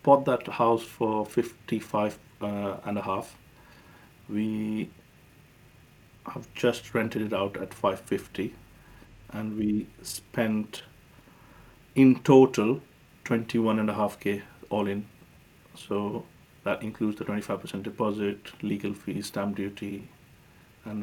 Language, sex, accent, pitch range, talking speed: English, male, Indian, 105-120 Hz, 115 wpm